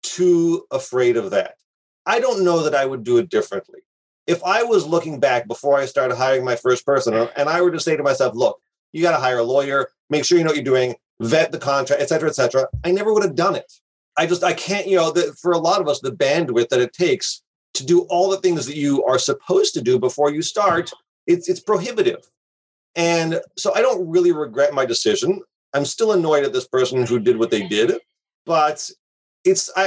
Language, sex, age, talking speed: English, male, 40-59, 230 wpm